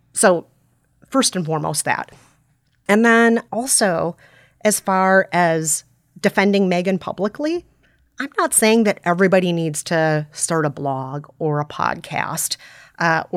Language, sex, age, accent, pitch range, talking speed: English, female, 30-49, American, 155-205 Hz, 125 wpm